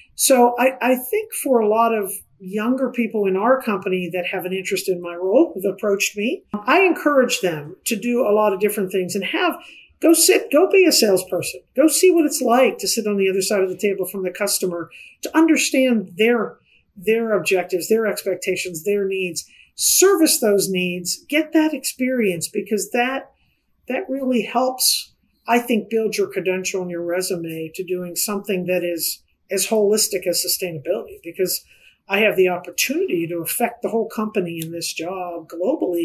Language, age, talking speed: English, 50-69, 180 wpm